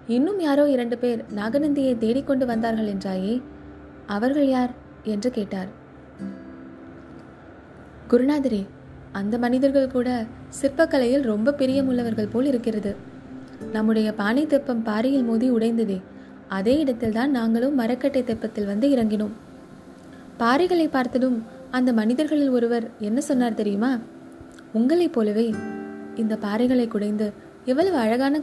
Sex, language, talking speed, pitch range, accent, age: female, Tamil, 95 wpm, 210-265 Hz, native, 20-39